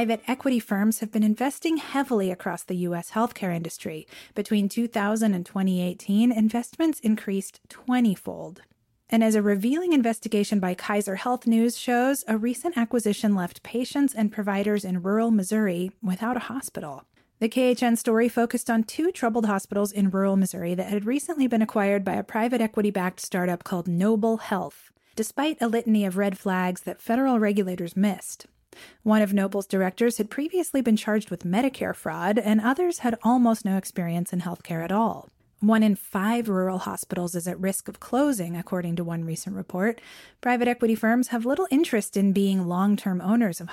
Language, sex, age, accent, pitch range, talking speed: English, female, 30-49, American, 190-235 Hz, 170 wpm